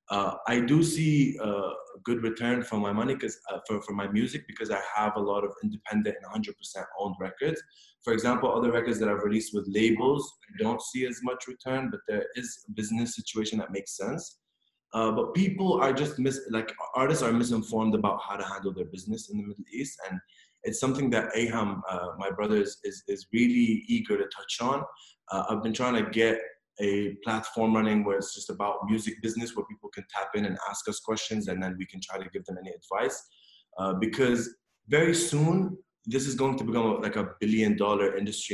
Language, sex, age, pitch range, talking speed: English, male, 20-39, 105-135 Hz, 210 wpm